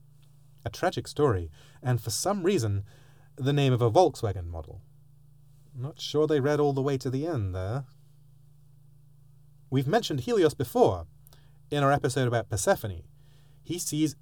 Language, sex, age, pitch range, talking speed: English, male, 30-49, 115-145 Hz, 150 wpm